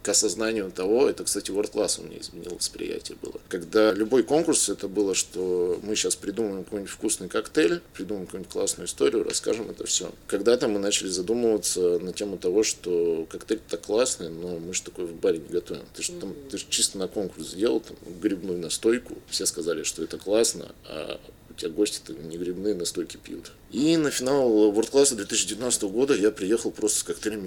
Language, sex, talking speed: Russian, male, 190 wpm